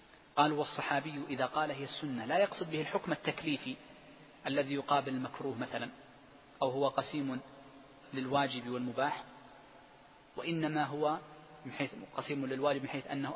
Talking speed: 125 wpm